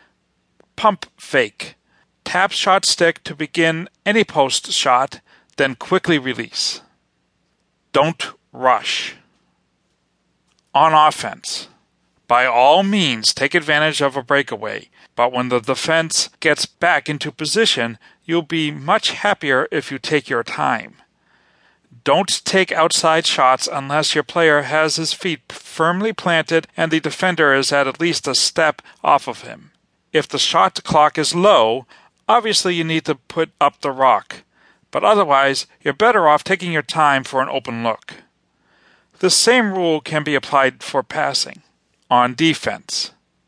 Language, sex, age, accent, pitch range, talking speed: English, male, 40-59, American, 140-175 Hz, 140 wpm